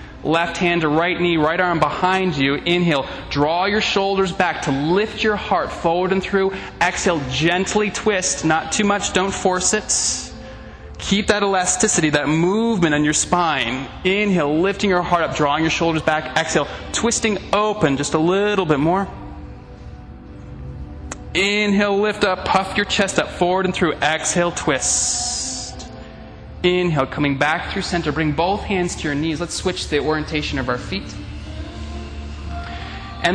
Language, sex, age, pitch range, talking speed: English, male, 20-39, 155-200 Hz, 155 wpm